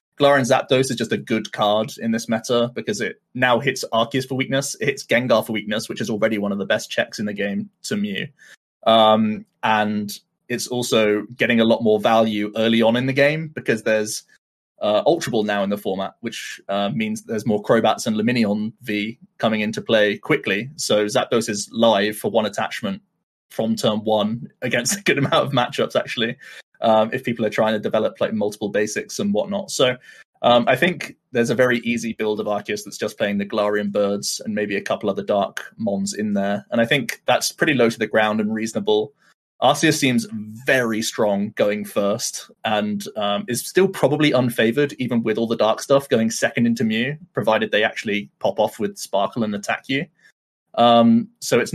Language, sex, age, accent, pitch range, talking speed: English, male, 20-39, British, 105-125 Hz, 200 wpm